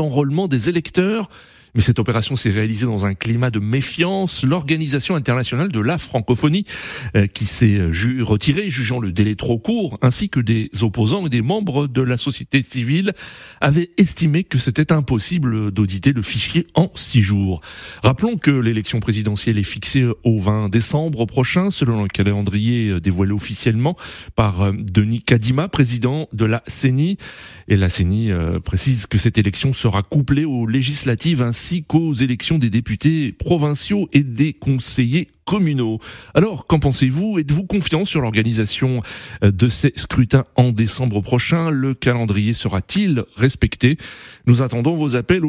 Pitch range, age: 115-155 Hz, 40-59